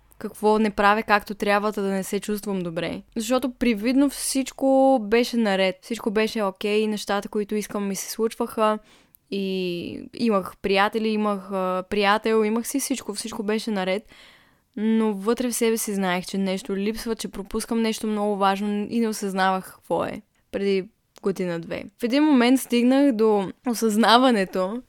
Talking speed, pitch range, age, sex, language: 150 wpm, 195-230 Hz, 10-29, female, Bulgarian